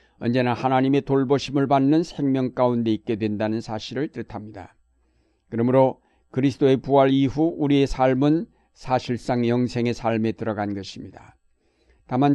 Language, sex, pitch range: Korean, male, 115-145 Hz